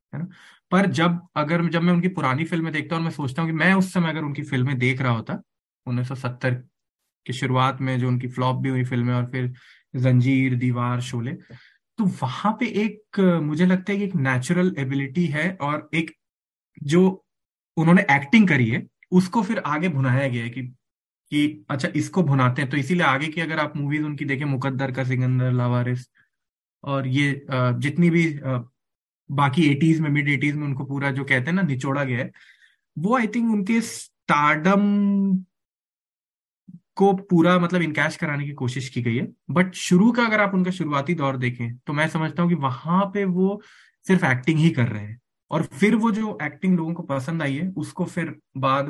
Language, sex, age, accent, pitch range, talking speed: Hindi, male, 20-39, native, 130-175 Hz, 190 wpm